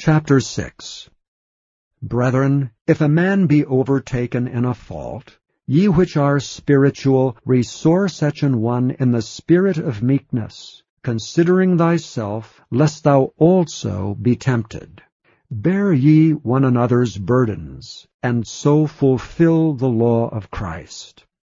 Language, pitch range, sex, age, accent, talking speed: English, 115-150 Hz, male, 50-69, American, 120 wpm